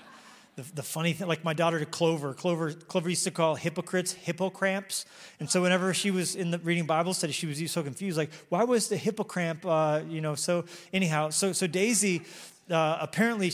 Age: 30-49